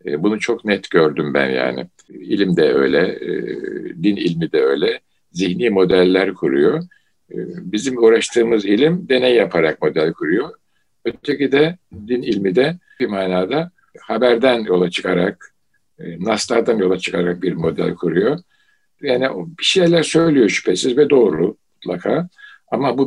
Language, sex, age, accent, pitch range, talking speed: Turkish, male, 60-79, native, 90-150 Hz, 125 wpm